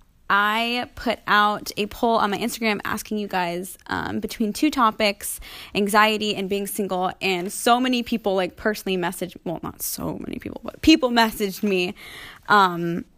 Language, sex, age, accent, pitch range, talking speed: English, female, 20-39, American, 190-230 Hz, 165 wpm